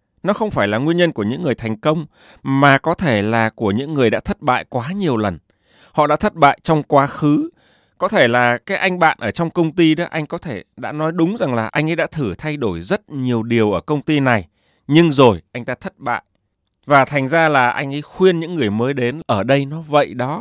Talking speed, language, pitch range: 250 wpm, Vietnamese, 115-165 Hz